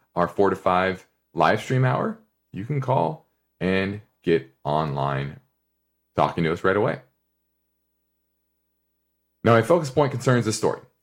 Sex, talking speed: male, 135 wpm